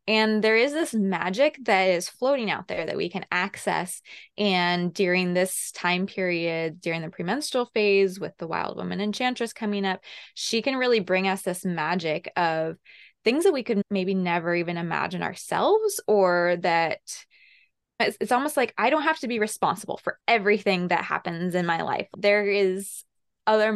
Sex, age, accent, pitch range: female, 20-39, American, 185-225 Hz